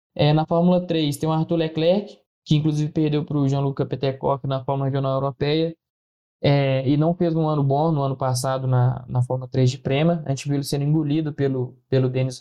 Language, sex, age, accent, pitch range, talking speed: Portuguese, male, 20-39, Brazilian, 130-160 Hz, 215 wpm